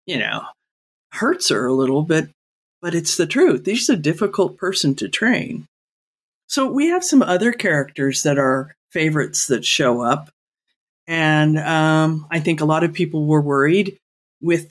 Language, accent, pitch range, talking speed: English, American, 150-200 Hz, 165 wpm